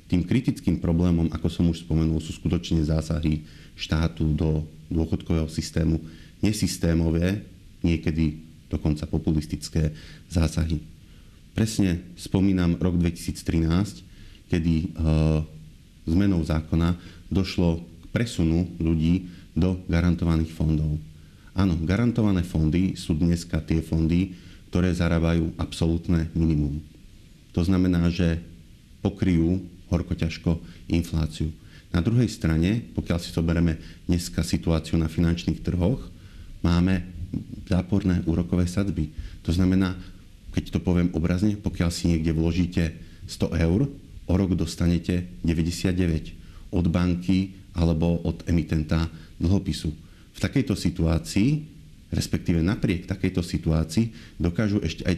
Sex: male